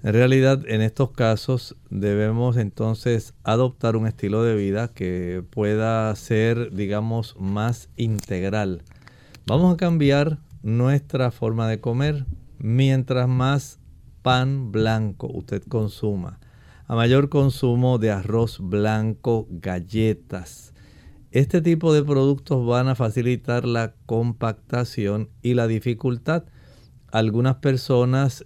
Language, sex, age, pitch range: Spanish, male, 50-69, 110-135 Hz